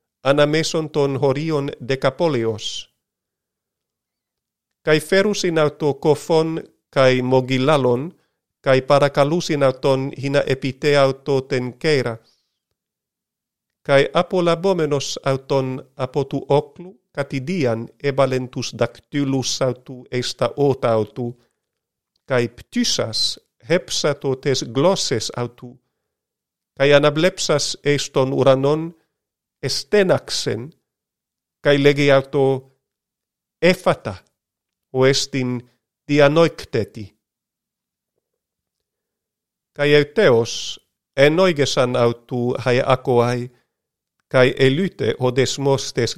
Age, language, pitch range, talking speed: 50-69, Greek, 130-150 Hz, 75 wpm